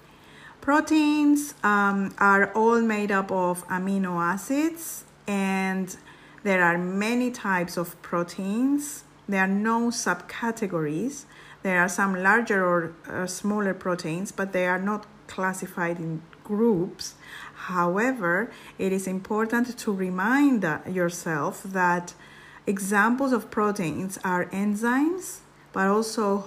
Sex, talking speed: female, 115 wpm